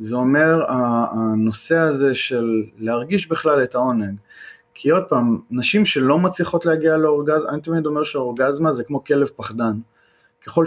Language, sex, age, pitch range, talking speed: Hebrew, male, 20-39, 120-155 Hz, 145 wpm